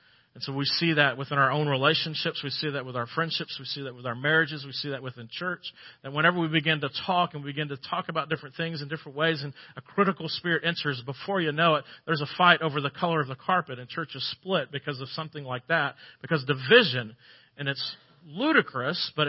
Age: 40-59